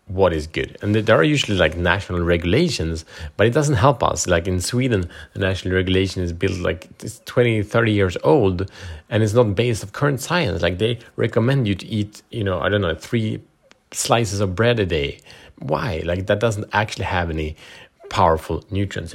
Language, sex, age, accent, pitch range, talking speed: Swedish, male, 30-49, Norwegian, 90-120 Hz, 190 wpm